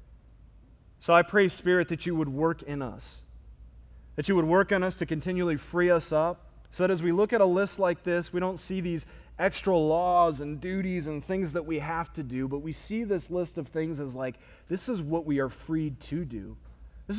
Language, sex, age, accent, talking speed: English, male, 30-49, American, 225 wpm